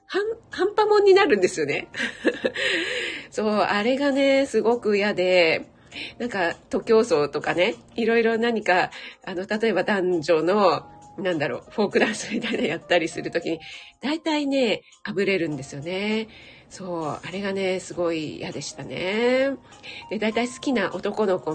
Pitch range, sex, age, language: 175-255 Hz, female, 40-59, Japanese